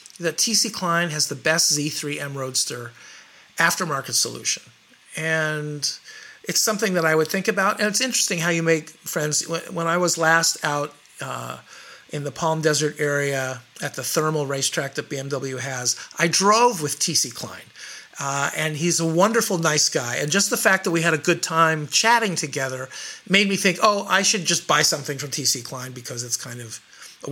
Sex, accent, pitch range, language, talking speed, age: male, American, 140-170 Hz, English, 185 wpm, 50-69